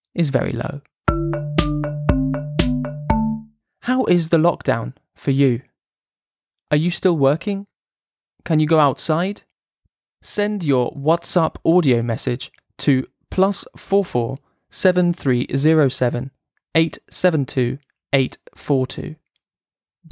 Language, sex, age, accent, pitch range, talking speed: English, male, 20-39, British, 130-165 Hz, 70 wpm